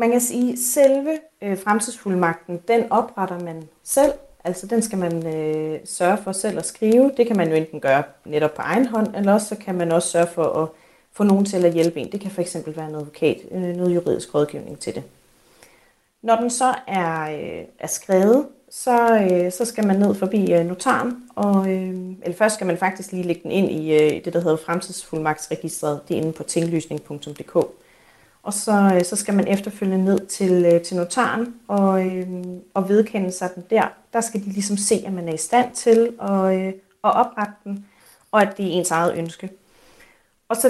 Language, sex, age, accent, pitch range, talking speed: Danish, female, 30-49, native, 175-225 Hz, 195 wpm